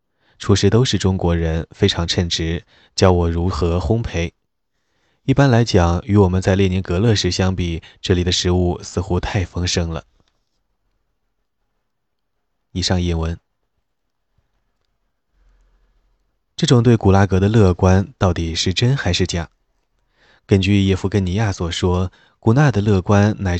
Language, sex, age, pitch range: Chinese, male, 20-39, 85-105 Hz